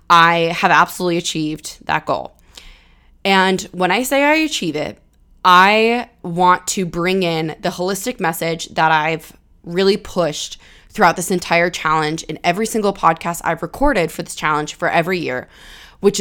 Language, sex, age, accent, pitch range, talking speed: English, female, 20-39, American, 165-200 Hz, 155 wpm